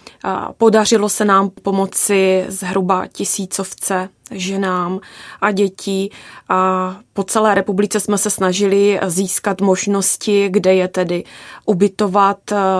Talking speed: 100 wpm